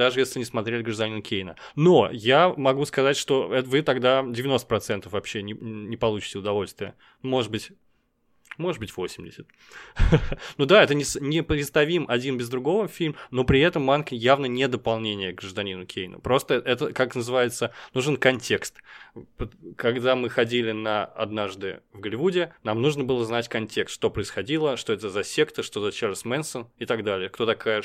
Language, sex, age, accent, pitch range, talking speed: Russian, male, 20-39, native, 110-135 Hz, 165 wpm